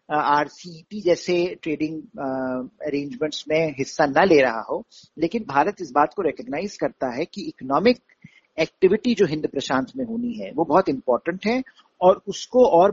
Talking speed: 165 wpm